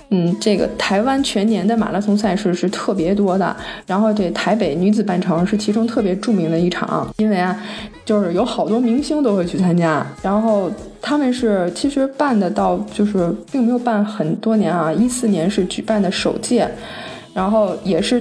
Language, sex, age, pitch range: Chinese, female, 20-39, 195-230 Hz